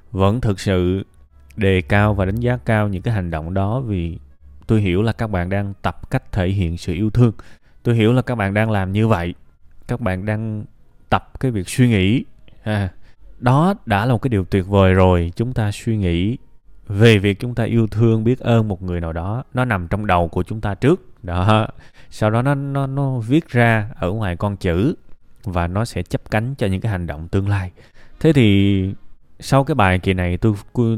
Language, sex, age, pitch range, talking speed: Vietnamese, male, 20-39, 90-115 Hz, 215 wpm